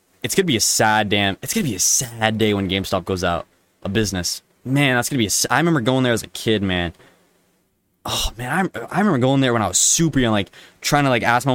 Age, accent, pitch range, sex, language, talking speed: 20-39, American, 95-135 Hz, male, English, 260 wpm